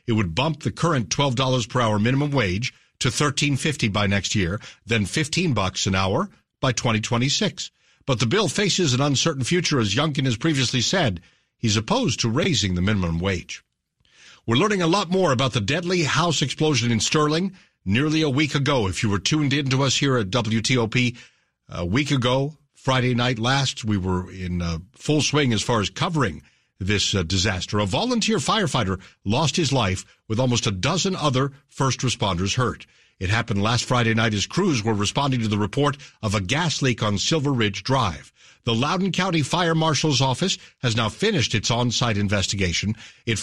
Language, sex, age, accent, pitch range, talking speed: English, male, 60-79, American, 110-150 Hz, 180 wpm